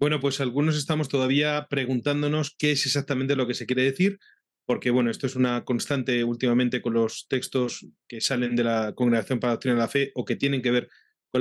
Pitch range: 125-150 Hz